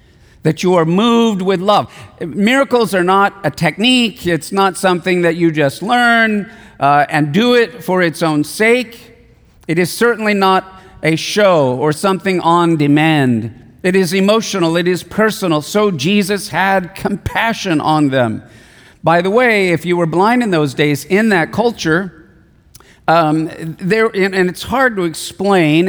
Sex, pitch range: male, 160-210 Hz